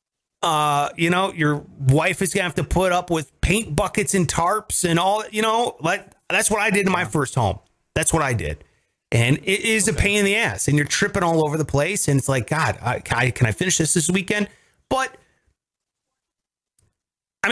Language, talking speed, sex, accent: English, 215 wpm, male, American